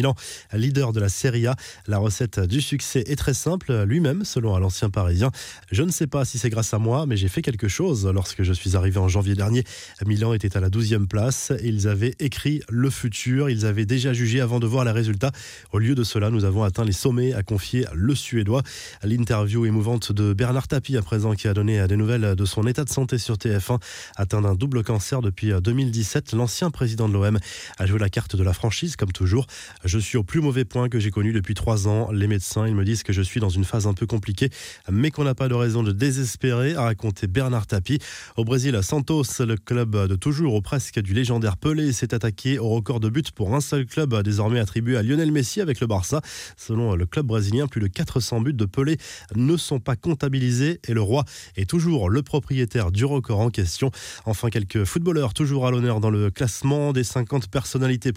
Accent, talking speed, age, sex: French, 230 wpm, 20-39, male